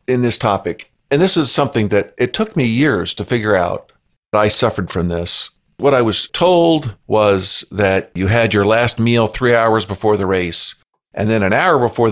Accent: American